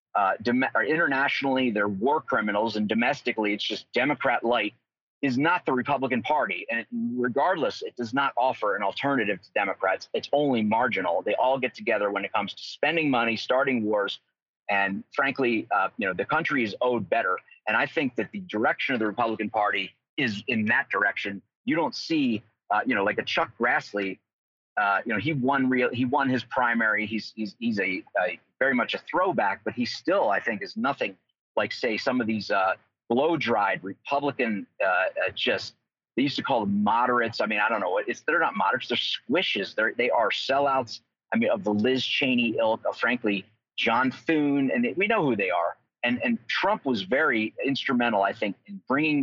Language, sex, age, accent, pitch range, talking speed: English, male, 30-49, American, 110-160 Hz, 200 wpm